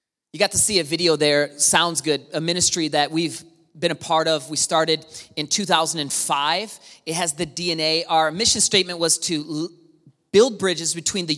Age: 30-49